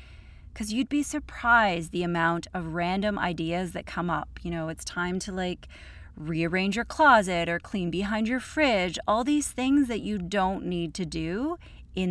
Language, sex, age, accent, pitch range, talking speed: English, female, 30-49, American, 165-220 Hz, 180 wpm